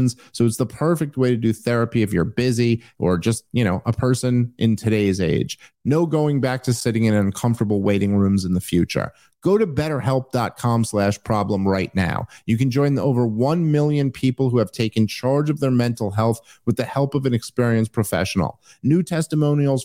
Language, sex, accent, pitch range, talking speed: English, male, American, 105-135 Hz, 195 wpm